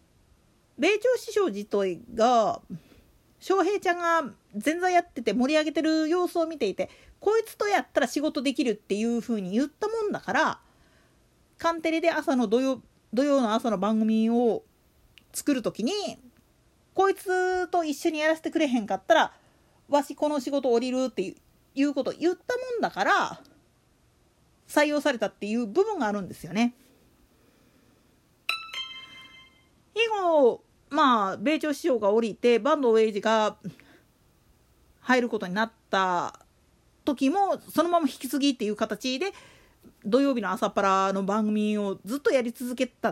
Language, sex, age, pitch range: Japanese, female, 40-59, 225-335 Hz